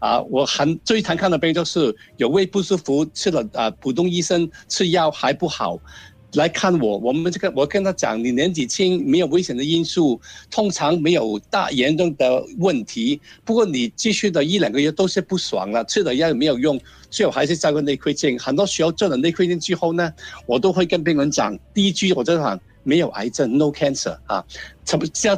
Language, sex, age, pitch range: Chinese, male, 60-79, 150-195 Hz